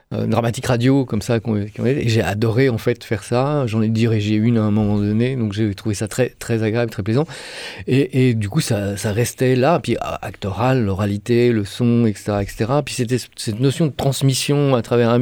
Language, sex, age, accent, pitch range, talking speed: French, male, 40-59, French, 110-125 Hz, 210 wpm